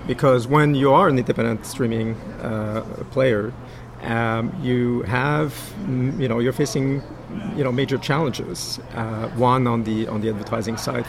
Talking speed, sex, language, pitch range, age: 150 wpm, male, English, 115-130 Hz, 50-69